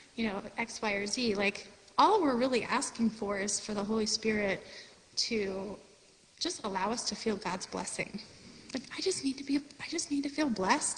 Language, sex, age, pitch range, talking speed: English, female, 30-49, 210-275 Hz, 200 wpm